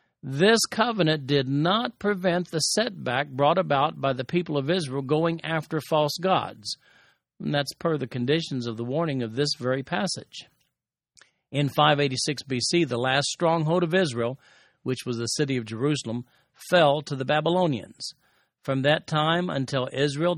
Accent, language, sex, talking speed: American, English, male, 155 wpm